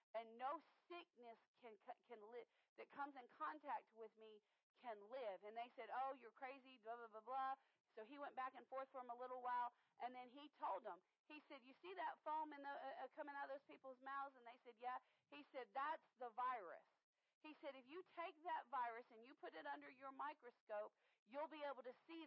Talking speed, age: 225 wpm, 40-59